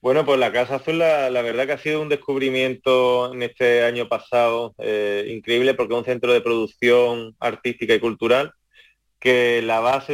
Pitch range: 110-130 Hz